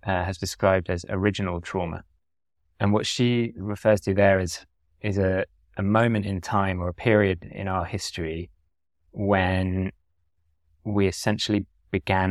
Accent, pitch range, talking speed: British, 85-100 Hz, 140 wpm